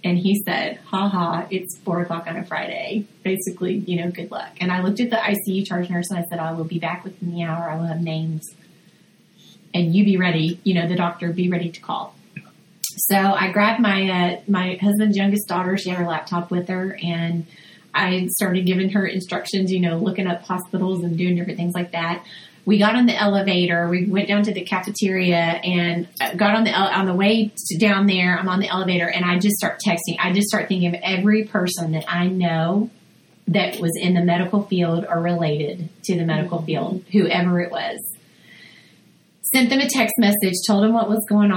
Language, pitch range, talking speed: English, 170-200 Hz, 210 wpm